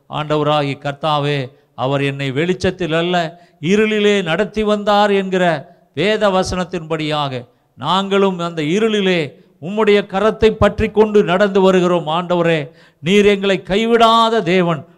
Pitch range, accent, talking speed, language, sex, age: 155-205 Hz, native, 100 wpm, Tamil, male, 50-69